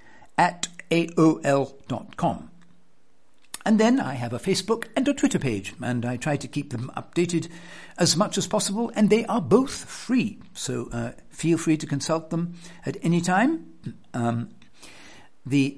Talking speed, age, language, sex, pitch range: 150 wpm, 60-79, English, male, 125-195 Hz